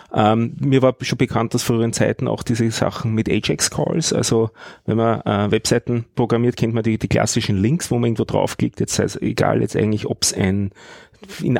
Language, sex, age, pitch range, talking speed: German, male, 30-49, 110-130 Hz, 190 wpm